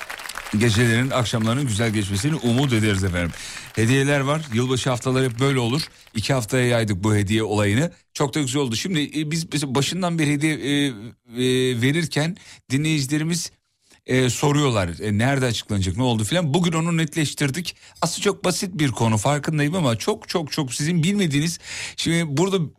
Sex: male